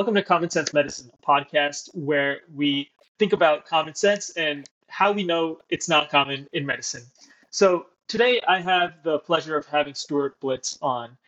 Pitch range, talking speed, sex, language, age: 140-165 Hz, 175 wpm, male, English, 20-39